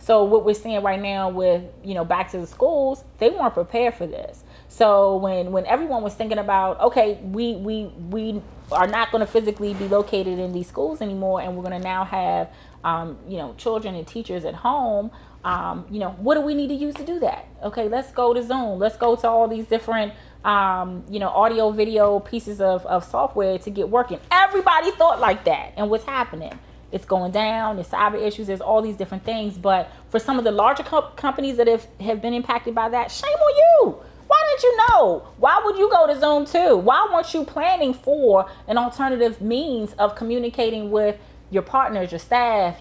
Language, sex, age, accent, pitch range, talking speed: English, female, 20-39, American, 190-245 Hz, 210 wpm